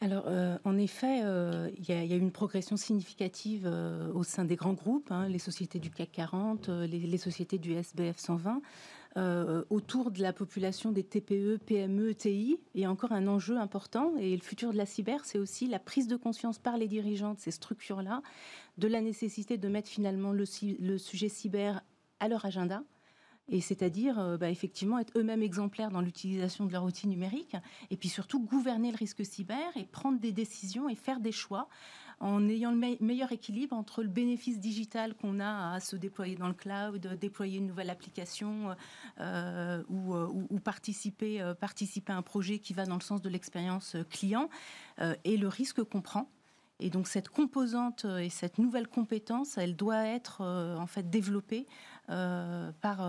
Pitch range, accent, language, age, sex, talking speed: 185-225 Hz, French, French, 40-59, female, 190 wpm